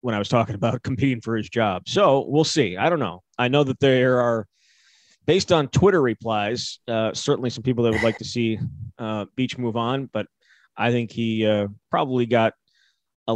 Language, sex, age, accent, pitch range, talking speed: English, male, 20-39, American, 110-130 Hz, 200 wpm